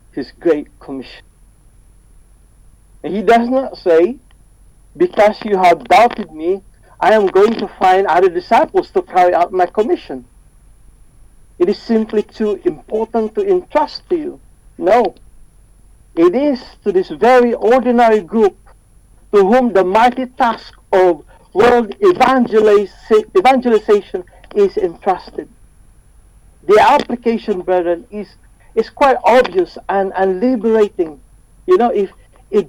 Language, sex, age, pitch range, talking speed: English, male, 50-69, 185-260 Hz, 125 wpm